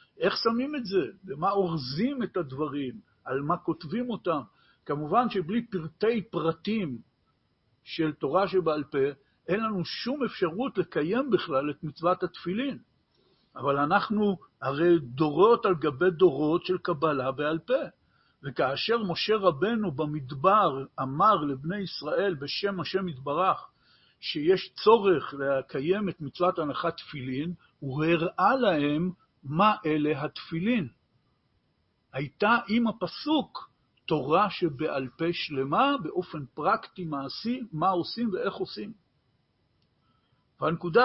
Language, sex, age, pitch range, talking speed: Hebrew, male, 50-69, 155-205 Hz, 115 wpm